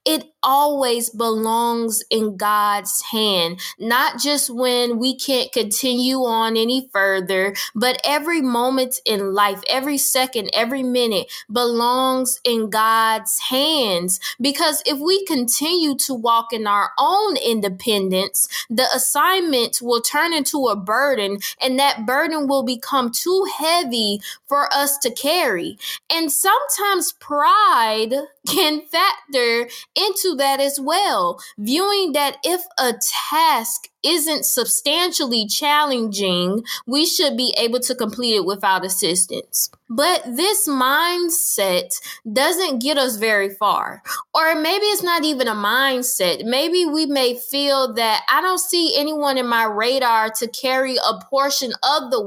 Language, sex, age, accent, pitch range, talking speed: English, female, 20-39, American, 230-305 Hz, 130 wpm